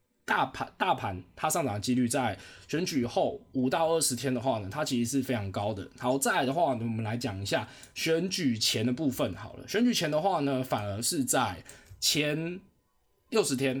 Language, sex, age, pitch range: Chinese, male, 20-39, 115-150 Hz